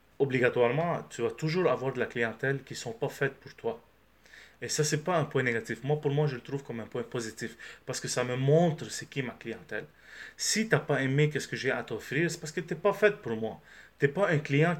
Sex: male